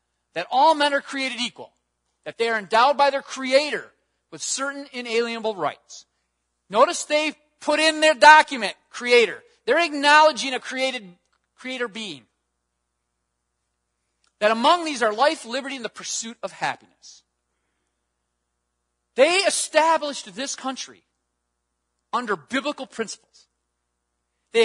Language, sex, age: English, male, 40-59